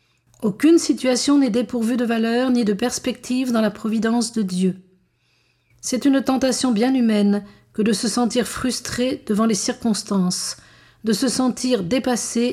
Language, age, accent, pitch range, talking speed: French, 50-69, French, 215-250 Hz, 150 wpm